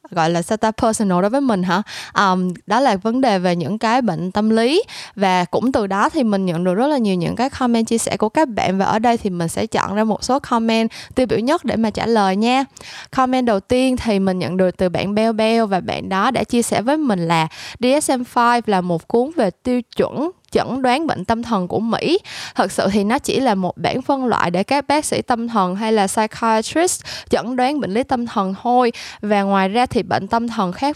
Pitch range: 190-255 Hz